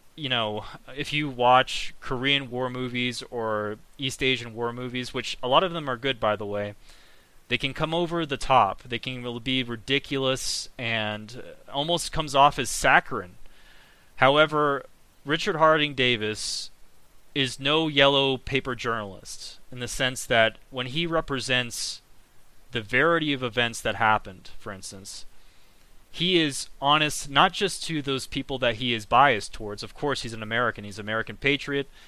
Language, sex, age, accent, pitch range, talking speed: English, male, 30-49, American, 115-145 Hz, 160 wpm